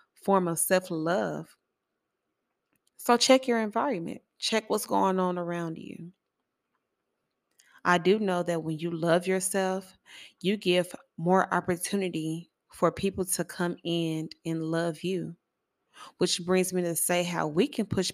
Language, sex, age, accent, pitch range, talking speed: English, female, 20-39, American, 170-195 Hz, 140 wpm